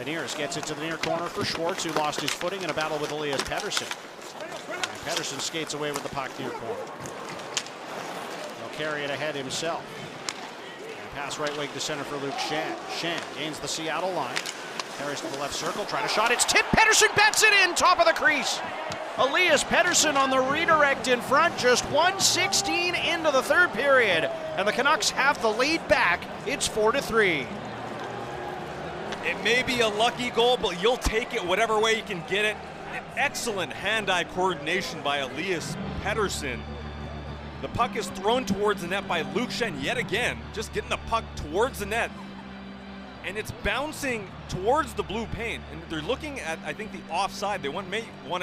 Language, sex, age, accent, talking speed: English, male, 40-59, American, 185 wpm